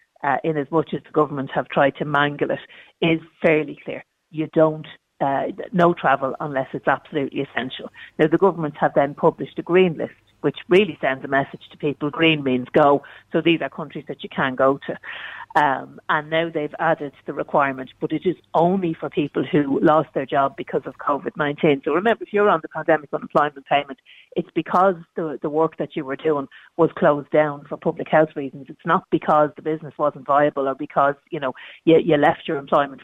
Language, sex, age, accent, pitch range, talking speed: English, female, 50-69, Irish, 140-165 Hz, 205 wpm